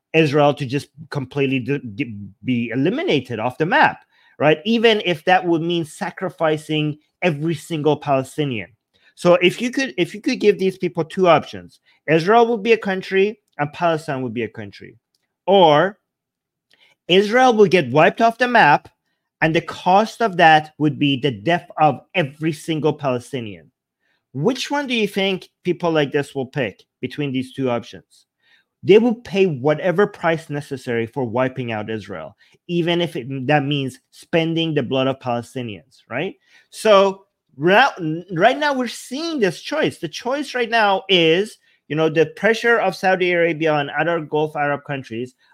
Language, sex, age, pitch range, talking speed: English, male, 30-49, 135-190 Hz, 155 wpm